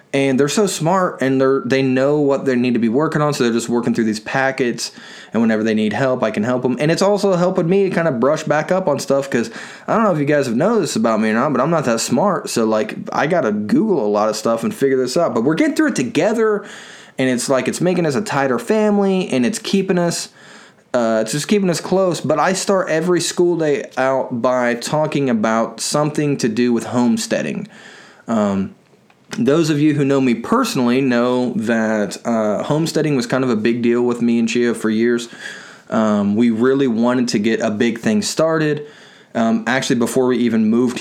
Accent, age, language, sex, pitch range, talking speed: American, 20-39, English, male, 115-160 Hz, 225 wpm